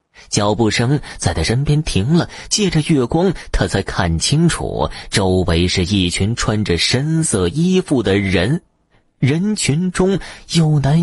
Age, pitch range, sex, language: 30-49, 95-145 Hz, male, Chinese